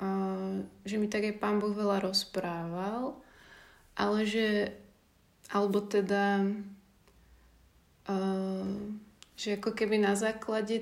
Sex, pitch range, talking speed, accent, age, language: female, 185-205 Hz, 100 wpm, native, 20-39, Czech